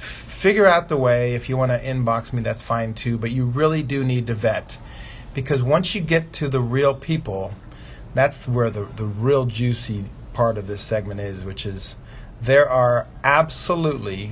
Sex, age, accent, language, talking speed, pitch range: male, 40-59, American, English, 185 wpm, 110-135 Hz